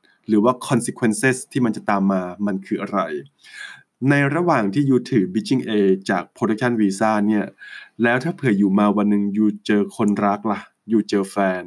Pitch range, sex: 100-125 Hz, male